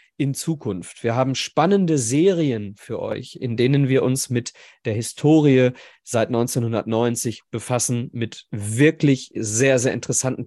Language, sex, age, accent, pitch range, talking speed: German, male, 40-59, German, 120-175 Hz, 130 wpm